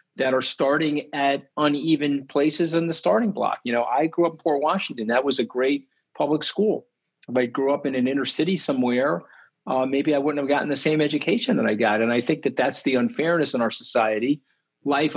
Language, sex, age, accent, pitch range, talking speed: English, male, 50-69, American, 125-165 Hz, 220 wpm